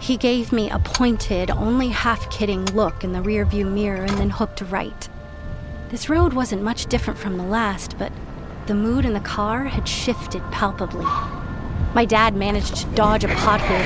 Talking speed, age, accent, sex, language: 175 wpm, 30-49, American, female, English